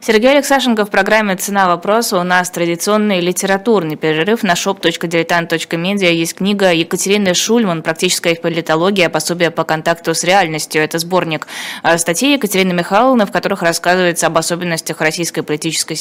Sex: female